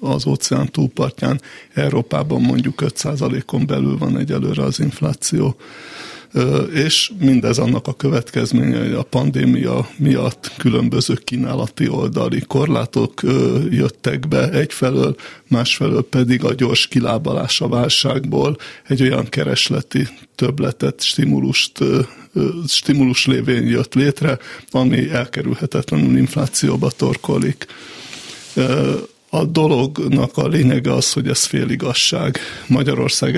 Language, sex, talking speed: Hungarian, male, 100 wpm